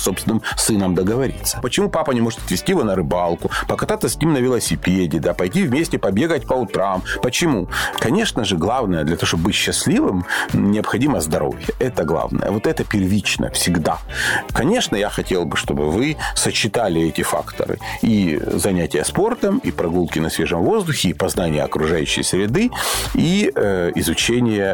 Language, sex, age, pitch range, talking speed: Russian, male, 40-59, 90-120 Hz, 155 wpm